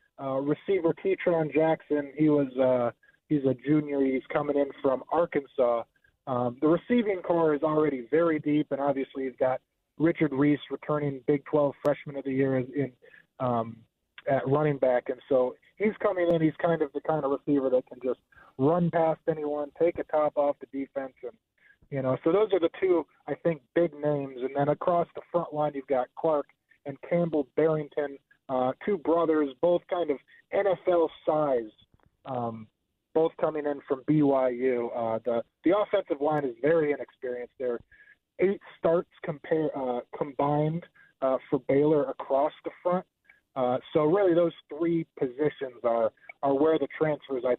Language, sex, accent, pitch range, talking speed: English, male, American, 130-160 Hz, 170 wpm